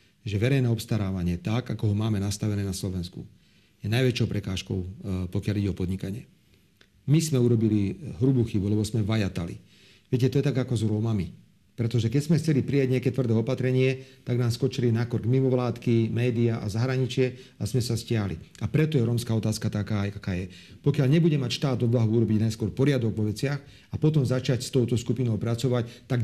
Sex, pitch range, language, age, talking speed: male, 110-140 Hz, Slovak, 40-59, 180 wpm